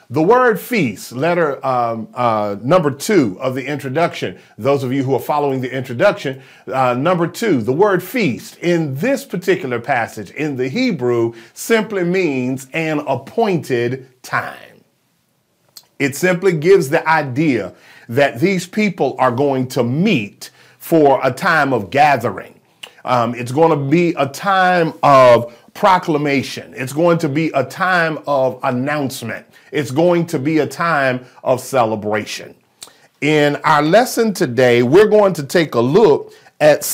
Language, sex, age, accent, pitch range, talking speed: English, male, 40-59, American, 130-185 Hz, 145 wpm